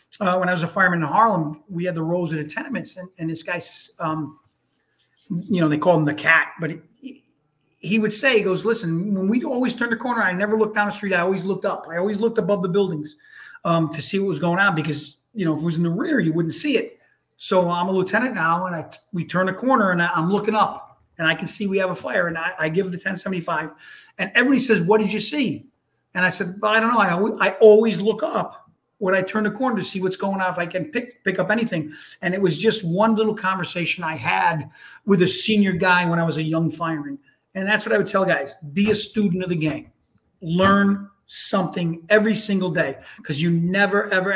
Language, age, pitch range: English, 40-59, 165-210 Hz